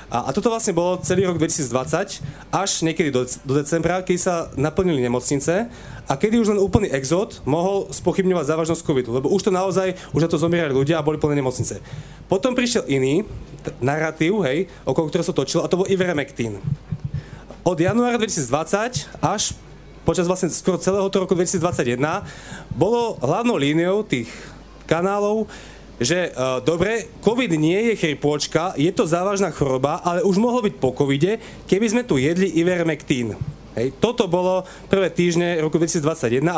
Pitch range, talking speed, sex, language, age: 150-190 Hz, 160 wpm, male, Slovak, 30-49